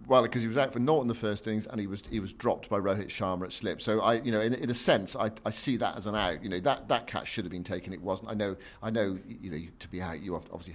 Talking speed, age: 330 wpm, 50-69